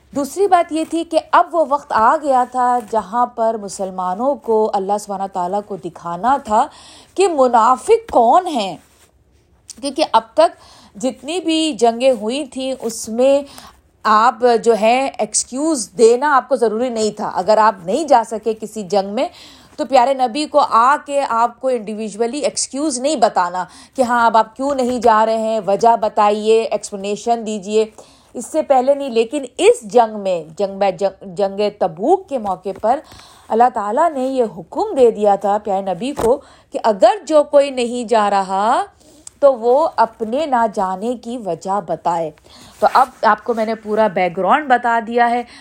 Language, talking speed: Urdu, 175 wpm